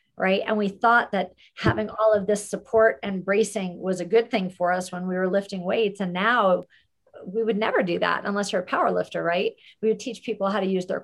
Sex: female